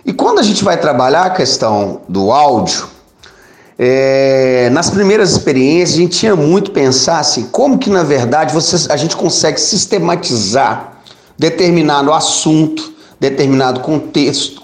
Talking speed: 135 wpm